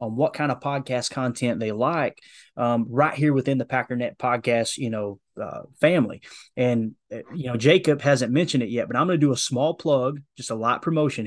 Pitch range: 120-145 Hz